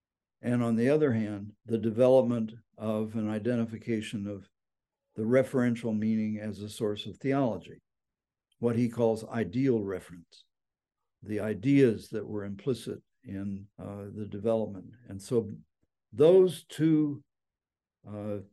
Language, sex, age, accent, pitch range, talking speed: English, male, 60-79, American, 105-130 Hz, 125 wpm